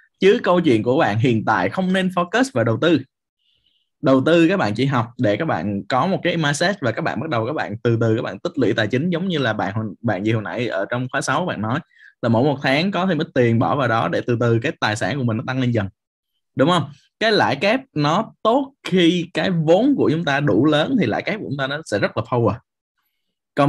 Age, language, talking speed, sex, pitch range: 20-39, Vietnamese, 265 wpm, male, 115-165 Hz